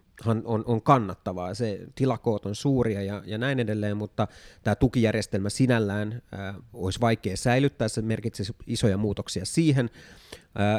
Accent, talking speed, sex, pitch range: native, 140 wpm, male, 105-120 Hz